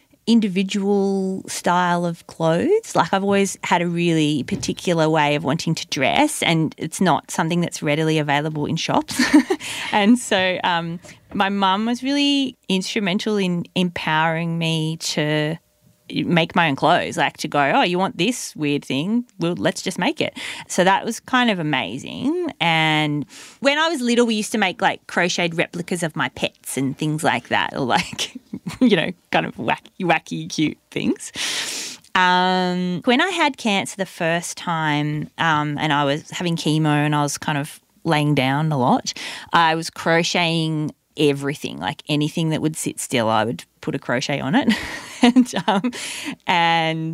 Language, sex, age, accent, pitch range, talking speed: English, female, 30-49, Australian, 155-210 Hz, 170 wpm